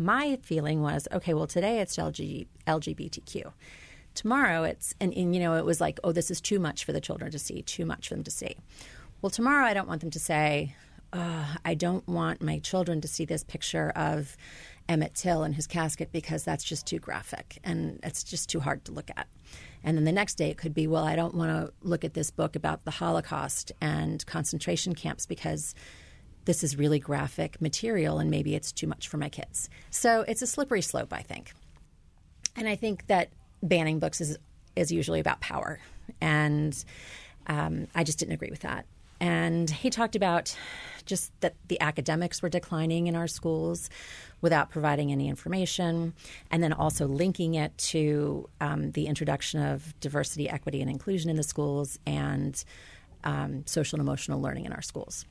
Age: 40-59